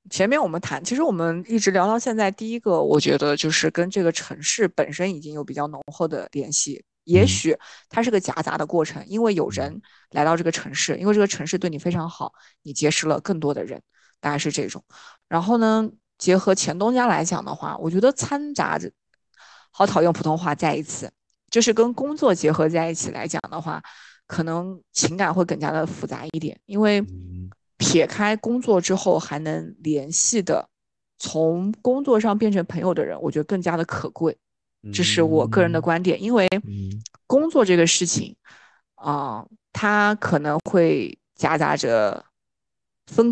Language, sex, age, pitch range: Chinese, female, 20-39, 155-205 Hz